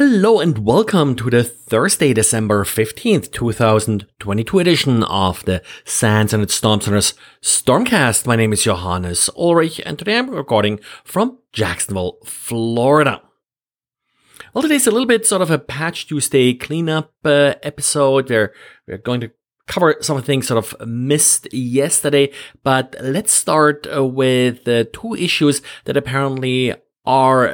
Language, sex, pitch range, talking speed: English, male, 115-145 Hz, 140 wpm